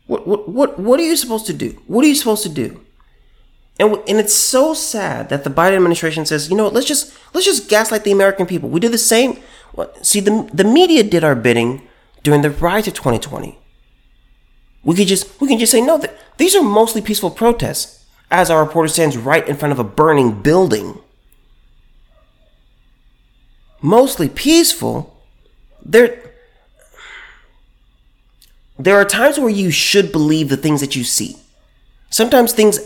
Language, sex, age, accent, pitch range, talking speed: English, male, 30-49, American, 135-220 Hz, 170 wpm